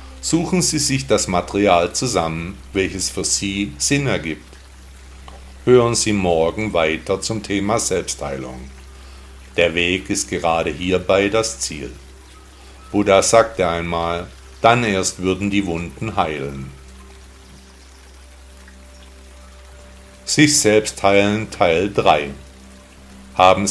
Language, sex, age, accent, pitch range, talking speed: German, male, 50-69, German, 65-105 Hz, 100 wpm